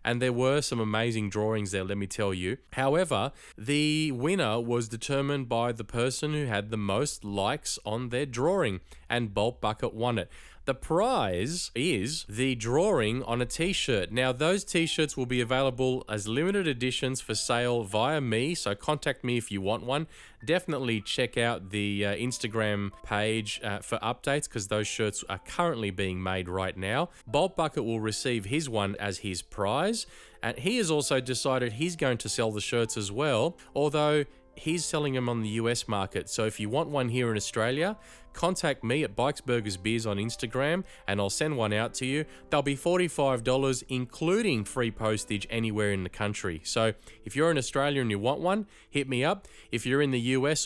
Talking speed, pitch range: 185 wpm, 105-140 Hz